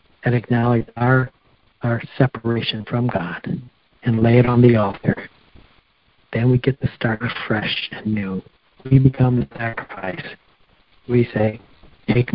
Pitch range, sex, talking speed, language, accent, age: 105-120 Hz, male, 140 wpm, English, American, 60-79